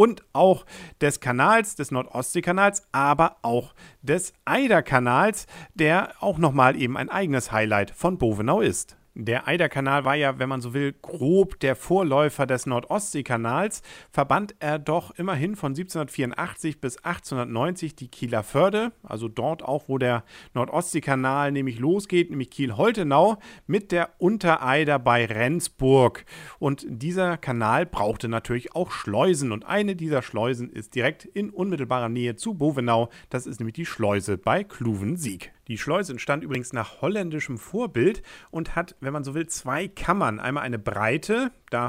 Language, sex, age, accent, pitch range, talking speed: English, male, 40-59, German, 120-170 Hz, 150 wpm